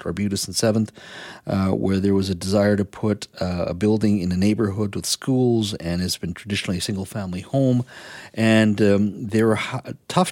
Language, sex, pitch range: English, male, 100-125 Hz